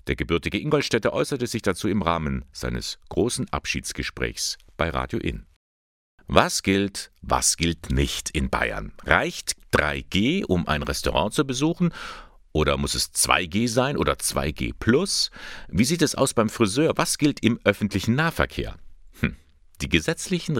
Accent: German